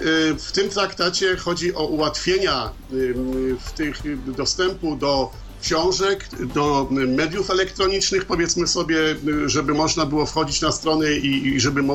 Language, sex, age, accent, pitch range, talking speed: Polish, male, 50-69, native, 145-190 Hz, 120 wpm